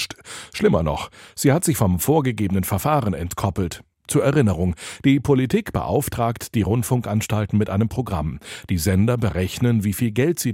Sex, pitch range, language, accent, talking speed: male, 95-125 Hz, German, German, 150 wpm